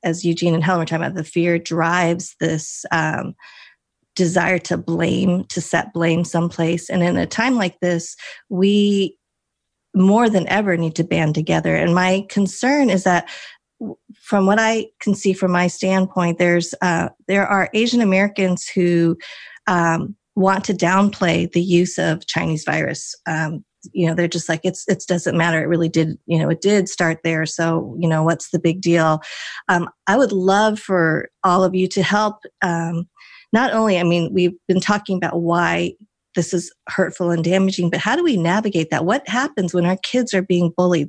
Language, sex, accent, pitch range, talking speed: English, female, American, 170-195 Hz, 185 wpm